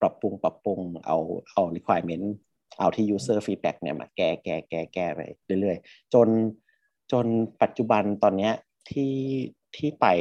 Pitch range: 85-110 Hz